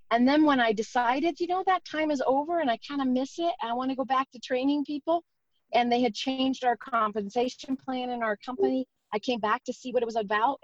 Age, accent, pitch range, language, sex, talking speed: 40-59, American, 215-285 Hz, English, female, 255 wpm